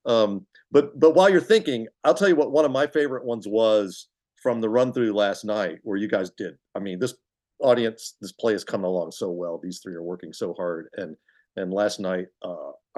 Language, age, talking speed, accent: English, 50-69, 220 wpm, American